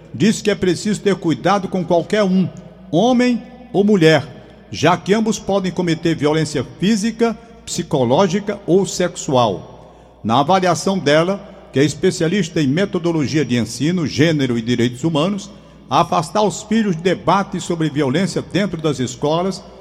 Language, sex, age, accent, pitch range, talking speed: Portuguese, male, 50-69, Brazilian, 155-200 Hz, 140 wpm